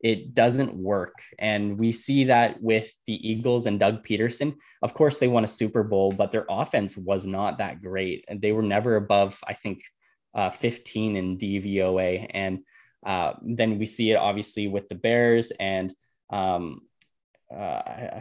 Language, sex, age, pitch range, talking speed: English, male, 10-29, 100-115 Hz, 170 wpm